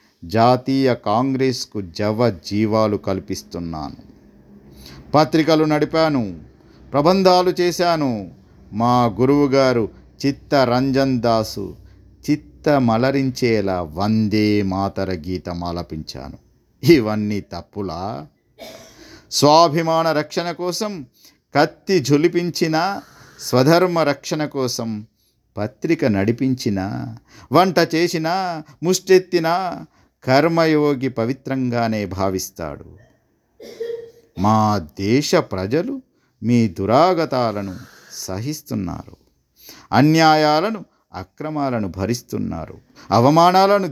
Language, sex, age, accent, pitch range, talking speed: Telugu, male, 50-69, native, 105-155 Hz, 65 wpm